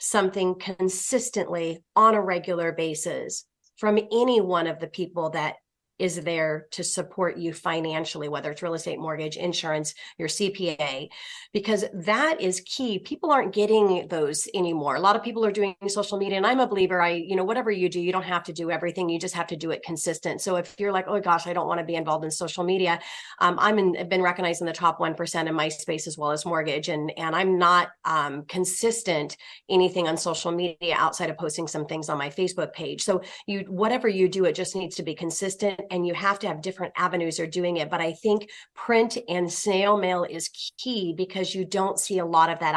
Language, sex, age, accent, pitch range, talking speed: English, female, 30-49, American, 165-195 Hz, 220 wpm